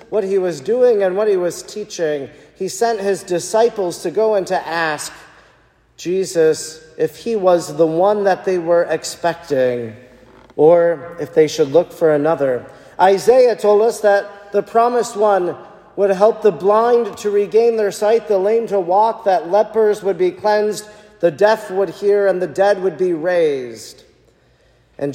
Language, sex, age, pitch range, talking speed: English, male, 40-59, 165-205 Hz, 165 wpm